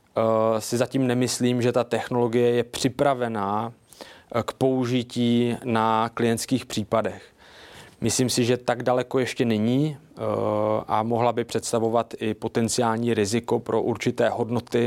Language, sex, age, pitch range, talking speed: Czech, male, 20-39, 115-135 Hz, 120 wpm